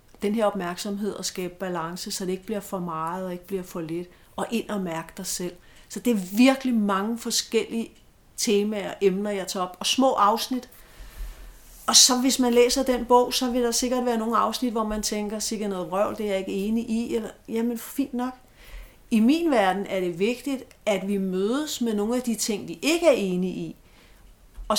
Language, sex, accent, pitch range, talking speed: Danish, female, native, 195-245 Hz, 215 wpm